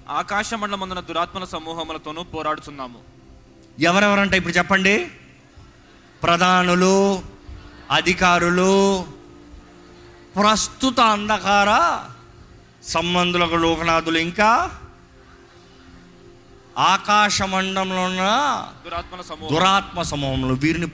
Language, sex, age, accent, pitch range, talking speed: Telugu, male, 30-49, native, 155-205 Hz, 65 wpm